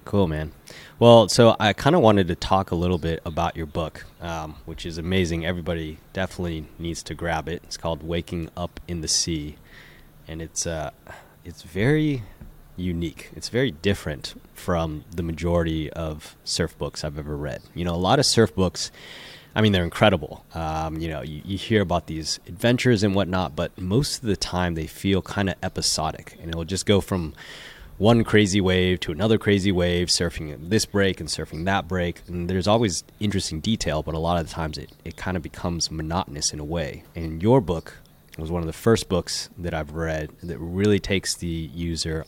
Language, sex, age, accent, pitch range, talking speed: English, male, 20-39, American, 80-95 Hz, 200 wpm